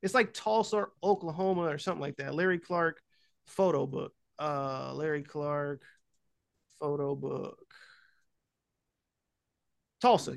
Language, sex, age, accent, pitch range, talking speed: English, male, 30-49, American, 160-200 Hz, 105 wpm